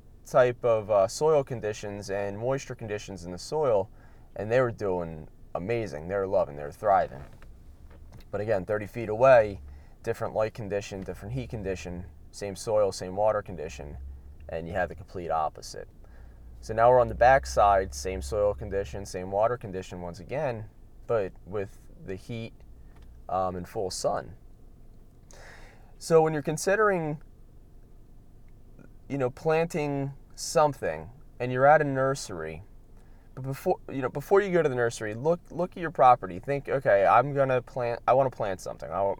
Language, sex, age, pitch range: English, male, 20-39, 95-125 Hz